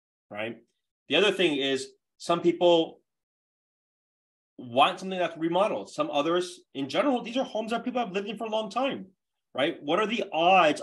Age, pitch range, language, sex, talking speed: 30-49, 120-190 Hz, English, male, 175 wpm